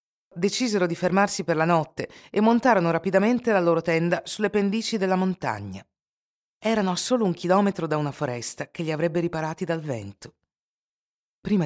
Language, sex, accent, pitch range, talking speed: Italian, female, native, 130-180 Hz, 160 wpm